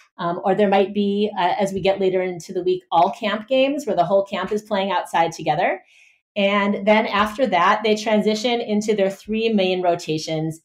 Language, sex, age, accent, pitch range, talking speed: English, female, 30-49, American, 175-220 Hz, 195 wpm